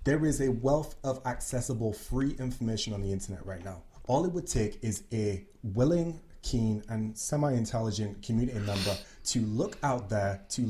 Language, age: English, 30-49